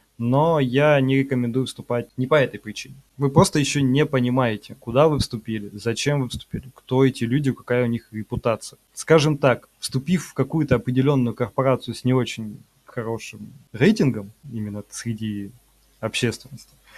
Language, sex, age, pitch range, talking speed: Russian, male, 20-39, 115-155 Hz, 150 wpm